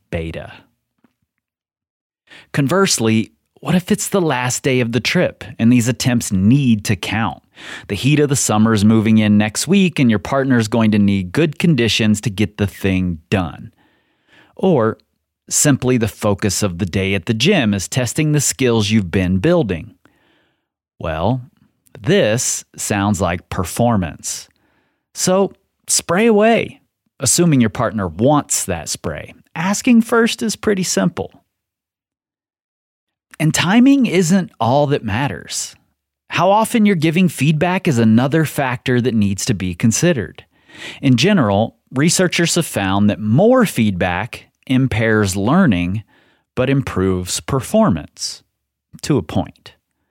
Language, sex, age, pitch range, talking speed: English, male, 30-49, 105-160 Hz, 135 wpm